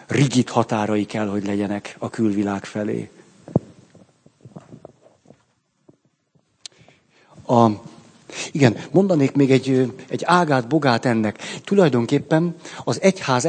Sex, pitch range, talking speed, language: male, 115-145 Hz, 80 wpm, Hungarian